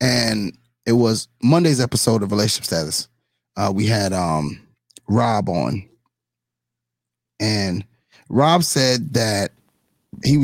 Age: 30-49